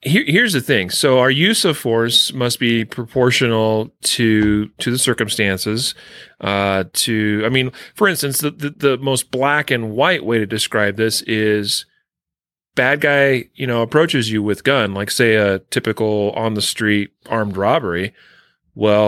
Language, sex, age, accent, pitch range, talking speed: English, male, 30-49, American, 105-130 Hz, 160 wpm